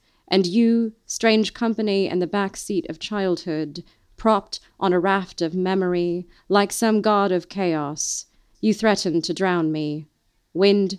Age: 30-49